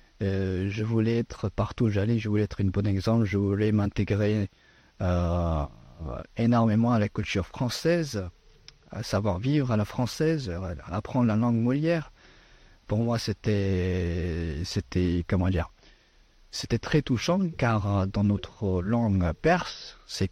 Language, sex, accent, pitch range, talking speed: French, male, French, 95-115 Hz, 140 wpm